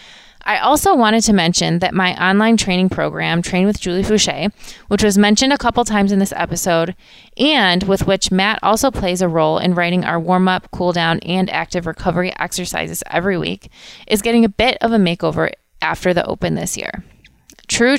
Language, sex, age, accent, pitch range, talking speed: English, female, 20-39, American, 175-210 Hz, 185 wpm